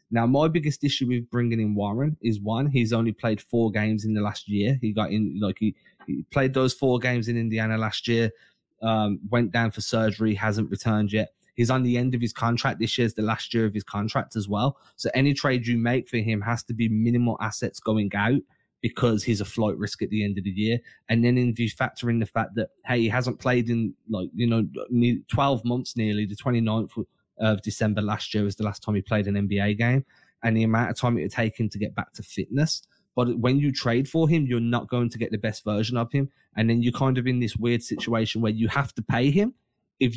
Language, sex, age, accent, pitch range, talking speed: English, male, 20-39, British, 110-125 Hz, 245 wpm